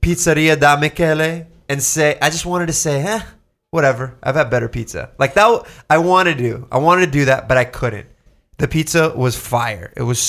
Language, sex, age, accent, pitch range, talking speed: English, male, 20-39, American, 125-155 Hz, 215 wpm